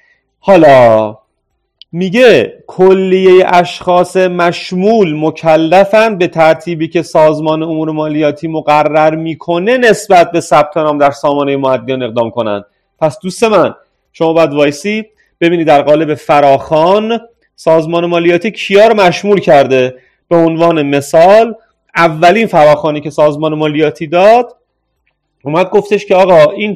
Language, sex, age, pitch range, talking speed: Persian, male, 30-49, 145-185 Hz, 115 wpm